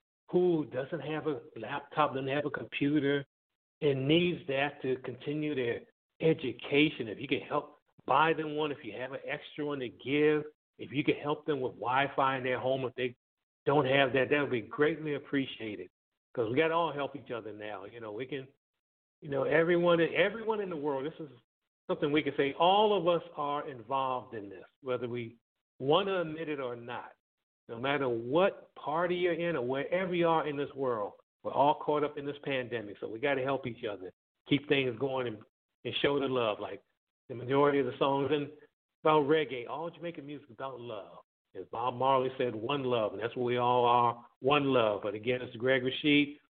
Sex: male